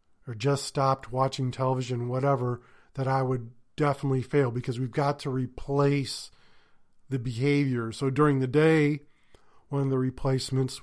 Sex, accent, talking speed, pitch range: male, American, 145 wpm, 130-145 Hz